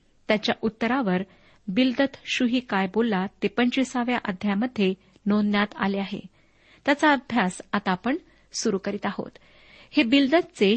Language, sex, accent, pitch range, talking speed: Marathi, female, native, 200-260 Hz, 115 wpm